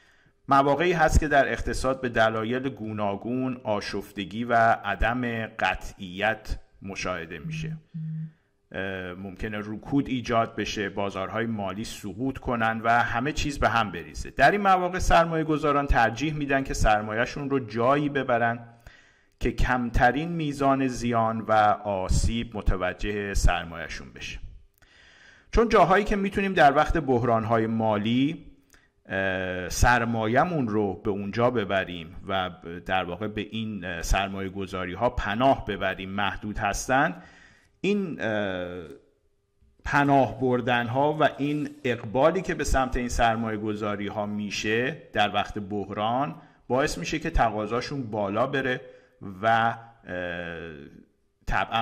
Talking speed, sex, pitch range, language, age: 115 wpm, male, 100-135 Hz, Persian, 50-69